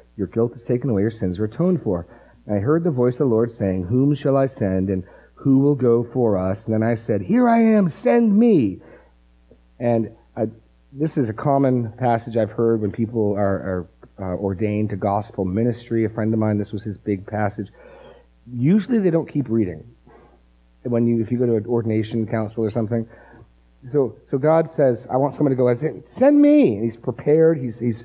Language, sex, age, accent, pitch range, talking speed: English, male, 40-59, American, 100-130 Hz, 210 wpm